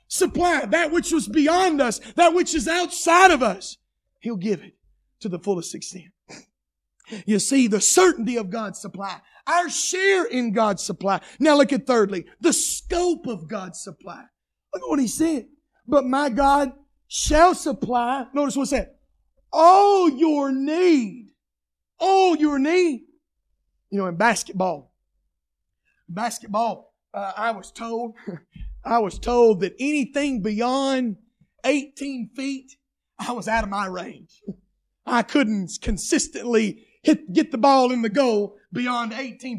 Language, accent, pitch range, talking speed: English, American, 220-290 Hz, 145 wpm